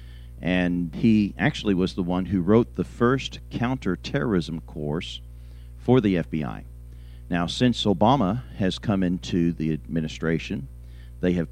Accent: American